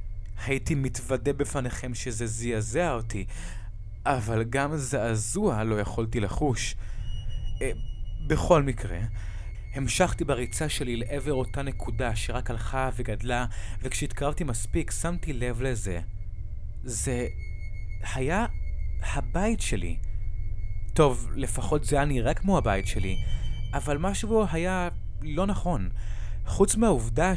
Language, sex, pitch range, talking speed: Hebrew, male, 100-135 Hz, 105 wpm